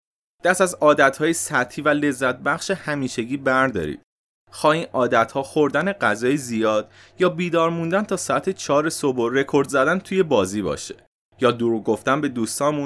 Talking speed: 150 wpm